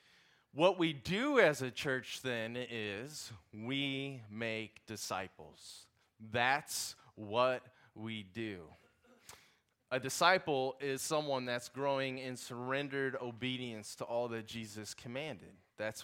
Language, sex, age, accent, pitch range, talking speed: English, male, 30-49, American, 110-140 Hz, 110 wpm